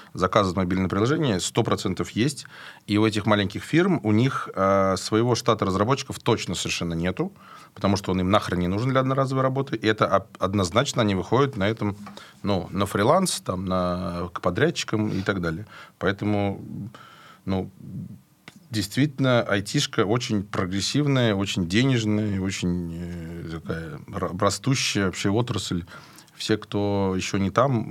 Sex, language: male, Russian